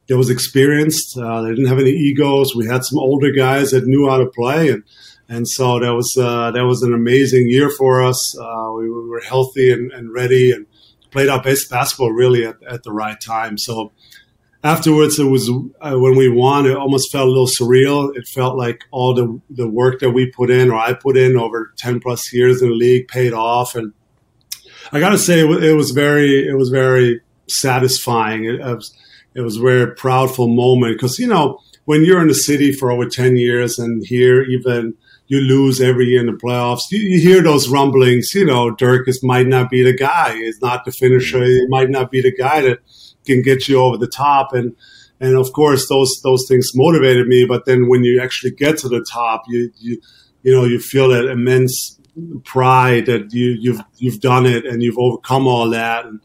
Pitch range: 120-130 Hz